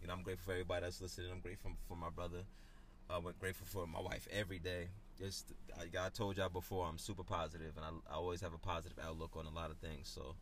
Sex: male